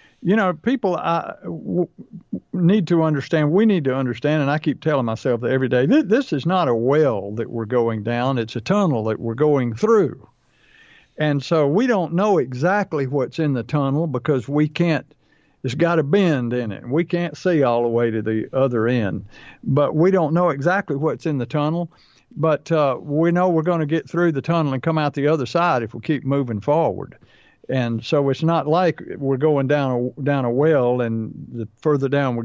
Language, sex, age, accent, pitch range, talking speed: English, male, 50-69, American, 125-160 Hz, 205 wpm